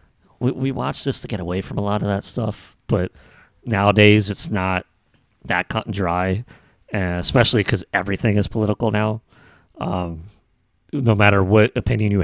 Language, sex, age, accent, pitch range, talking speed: English, male, 30-49, American, 95-115 Hz, 160 wpm